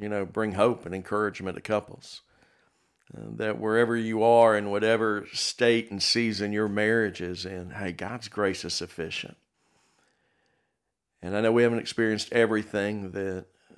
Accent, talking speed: American, 150 wpm